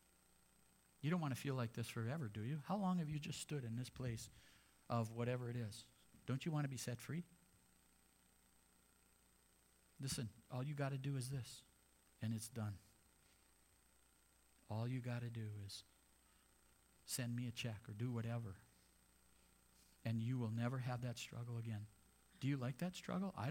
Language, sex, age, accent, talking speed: English, male, 50-69, American, 175 wpm